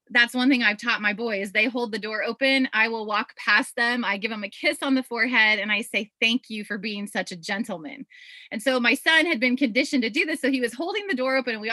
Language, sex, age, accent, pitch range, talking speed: English, female, 20-39, American, 210-275 Hz, 275 wpm